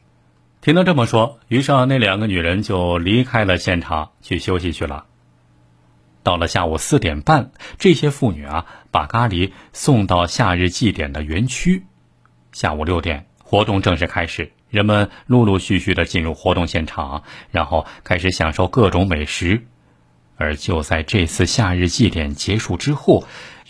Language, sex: Chinese, male